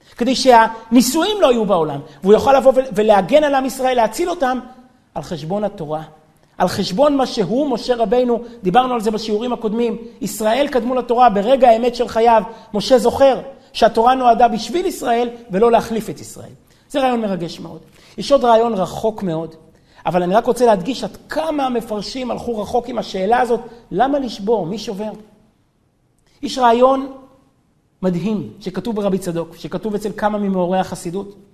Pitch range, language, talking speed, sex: 190-255 Hz, Hebrew, 155 wpm, male